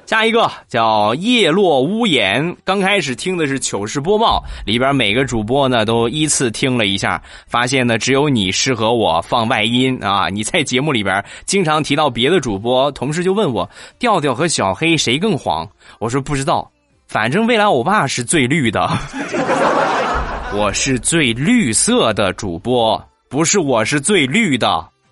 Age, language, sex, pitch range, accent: 20-39, Chinese, male, 125-190 Hz, native